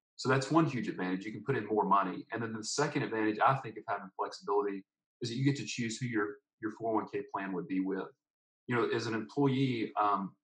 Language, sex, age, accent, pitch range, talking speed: English, male, 40-59, American, 100-135 Hz, 235 wpm